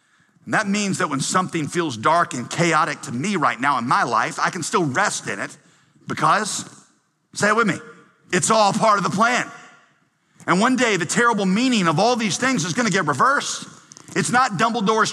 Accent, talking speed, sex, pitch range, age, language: American, 200 wpm, male, 140-185 Hz, 50-69, English